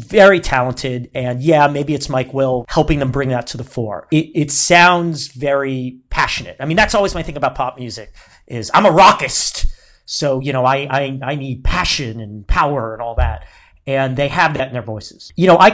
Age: 40-59